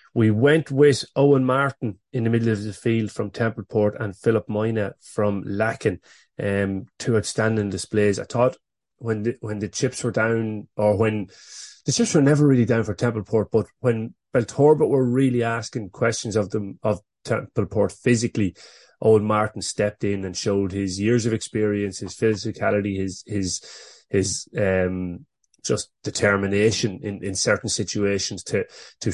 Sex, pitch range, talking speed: male, 100-115 Hz, 160 wpm